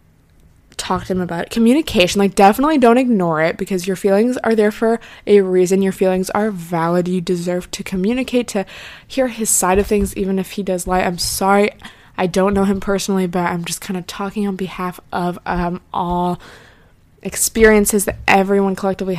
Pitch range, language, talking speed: 180-220 Hz, English, 185 wpm